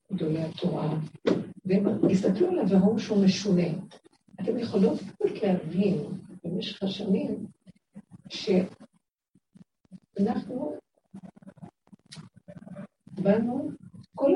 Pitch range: 180-205 Hz